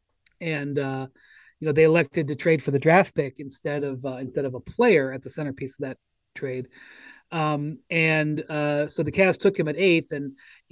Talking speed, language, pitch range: 205 wpm, English, 135-155 Hz